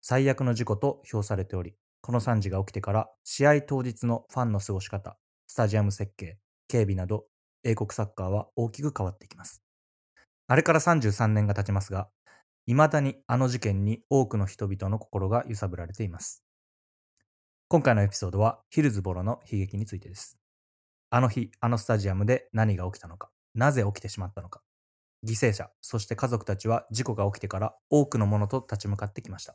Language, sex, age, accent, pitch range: English, male, 20-39, Japanese, 100-120 Hz